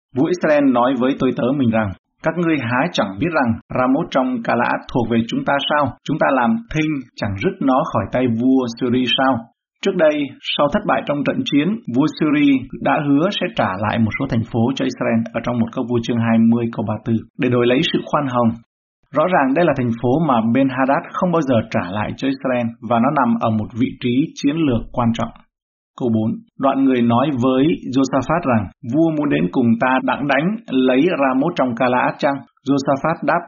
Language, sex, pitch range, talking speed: Vietnamese, male, 115-145 Hz, 215 wpm